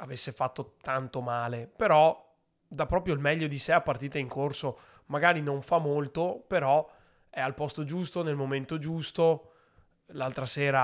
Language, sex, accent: Italian, male, native